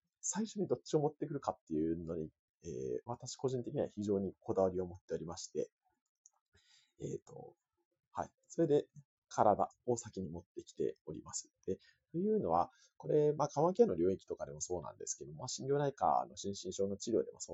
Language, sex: Japanese, male